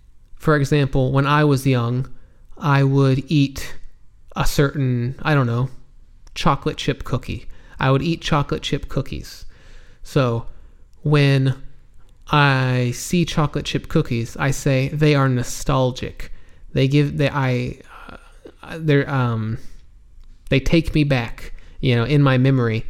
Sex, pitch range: male, 120-150 Hz